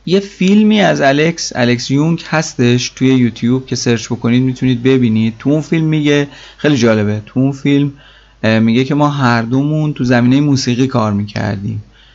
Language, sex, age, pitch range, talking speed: Persian, male, 30-49, 115-130 Hz, 155 wpm